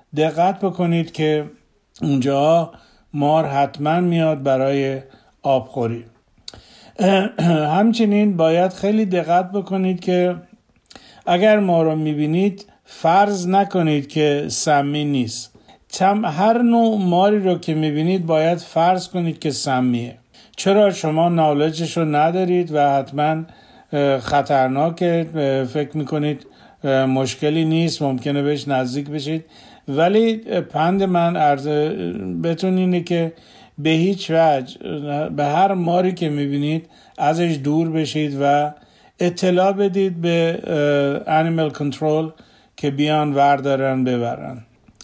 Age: 50-69